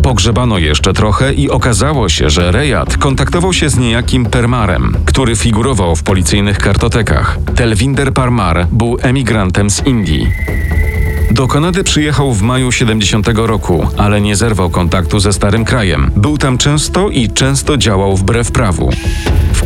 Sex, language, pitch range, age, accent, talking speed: male, Polish, 90-125 Hz, 40-59, native, 145 wpm